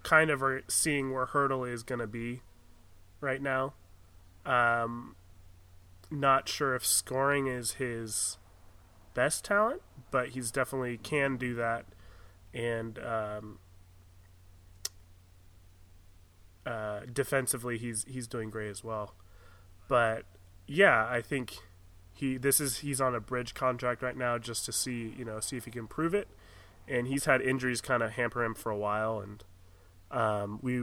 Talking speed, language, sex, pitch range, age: 145 wpm, English, male, 95-130 Hz, 20-39